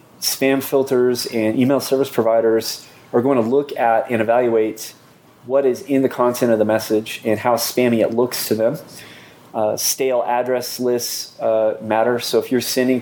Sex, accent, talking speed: male, American, 175 wpm